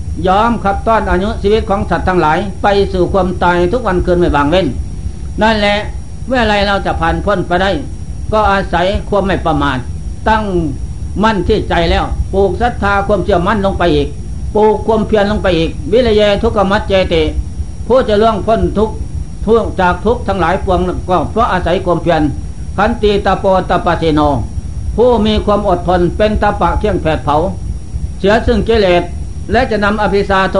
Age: 60-79